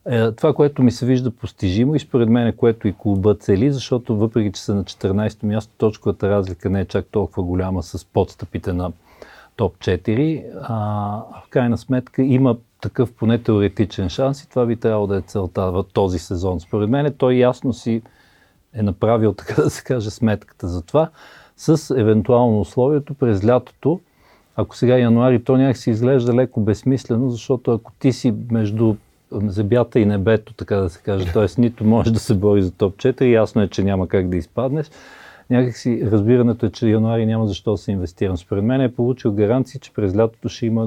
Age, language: 50-69, Bulgarian